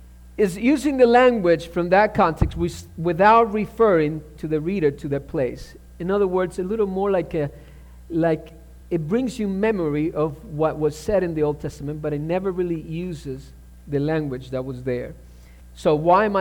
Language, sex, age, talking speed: English, male, 50-69, 180 wpm